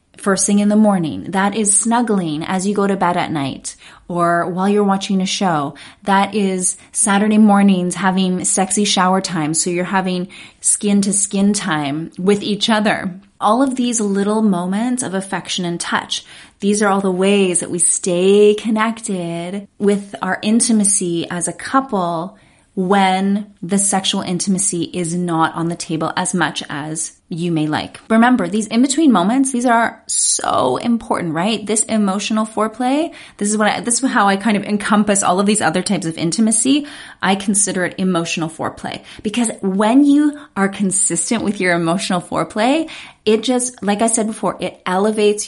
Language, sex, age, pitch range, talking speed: English, female, 20-39, 180-220 Hz, 170 wpm